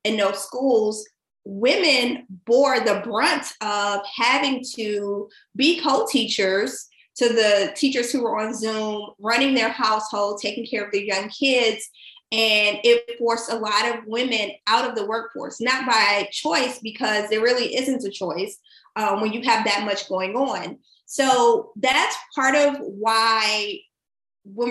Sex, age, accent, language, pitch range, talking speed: female, 20-39, American, English, 210-255 Hz, 150 wpm